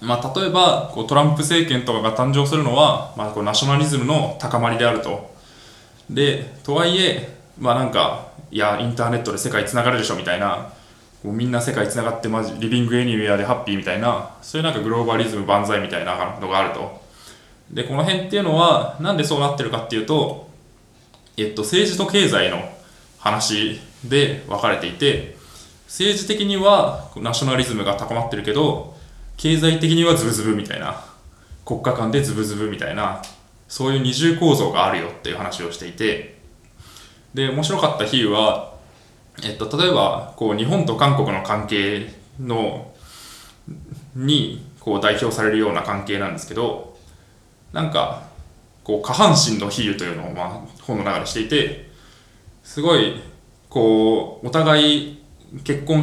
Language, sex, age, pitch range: Japanese, male, 20-39, 105-150 Hz